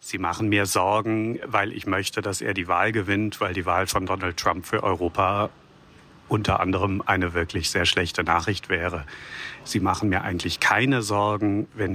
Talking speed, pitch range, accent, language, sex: 175 wpm, 100-125 Hz, German, German, male